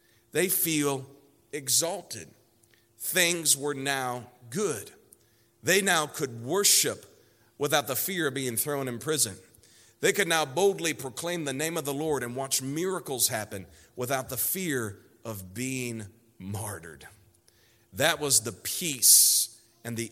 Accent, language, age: American, English, 40-59